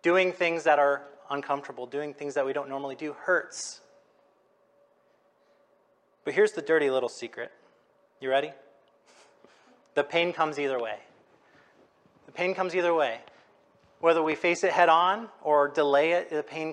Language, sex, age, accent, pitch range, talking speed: English, male, 30-49, American, 145-175 Hz, 150 wpm